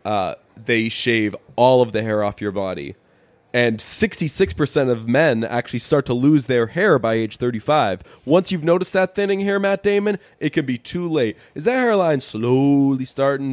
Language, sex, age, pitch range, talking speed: English, male, 20-39, 125-170 Hz, 180 wpm